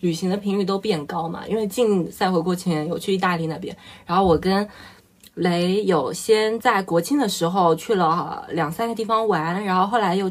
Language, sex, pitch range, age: Chinese, female, 170-220 Hz, 20-39